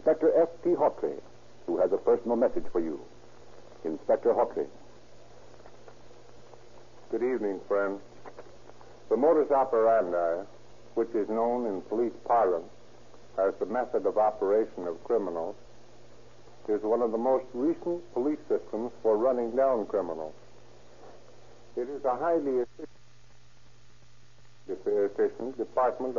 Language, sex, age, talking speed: English, male, 60-79, 110 wpm